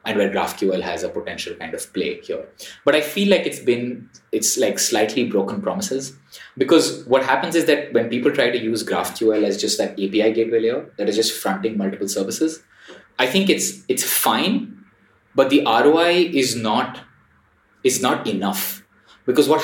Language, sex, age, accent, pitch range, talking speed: English, male, 20-39, Indian, 110-160 Hz, 180 wpm